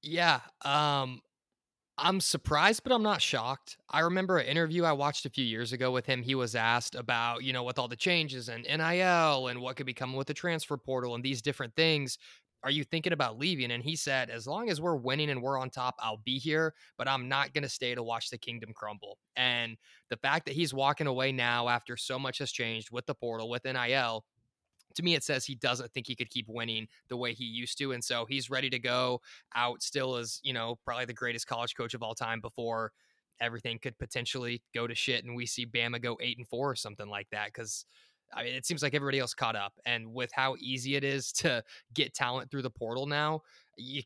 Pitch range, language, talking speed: 115-140 Hz, English, 235 wpm